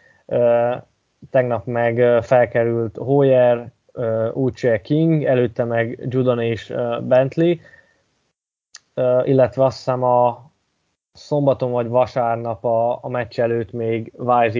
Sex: male